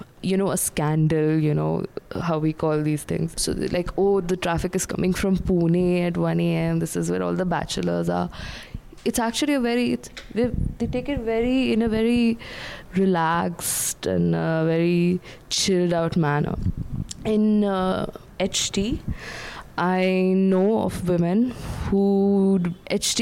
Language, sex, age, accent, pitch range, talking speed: English, female, 20-39, Indian, 155-190 Hz, 150 wpm